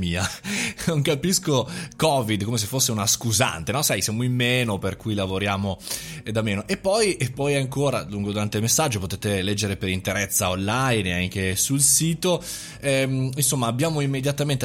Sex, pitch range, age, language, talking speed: male, 95-125 Hz, 20-39, Italian, 170 wpm